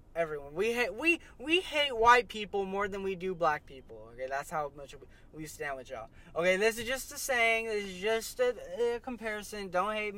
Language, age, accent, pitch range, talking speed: English, 10-29, American, 165-215 Hz, 210 wpm